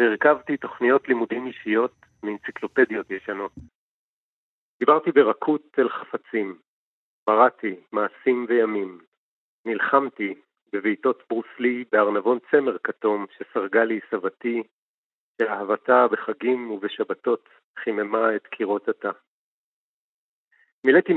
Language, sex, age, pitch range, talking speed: Hebrew, male, 50-69, 110-130 Hz, 85 wpm